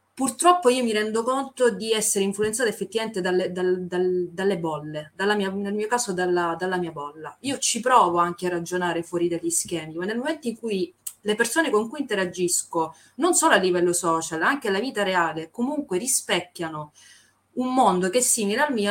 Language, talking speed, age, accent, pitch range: Italian, 180 wpm, 30-49, native, 170-220 Hz